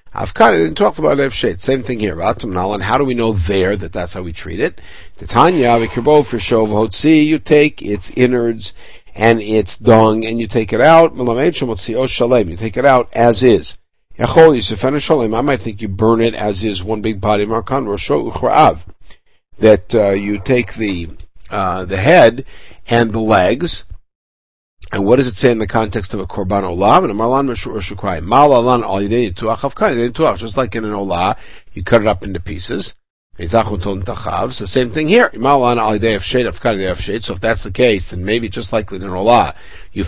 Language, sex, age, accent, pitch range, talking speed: English, male, 50-69, American, 100-125 Hz, 145 wpm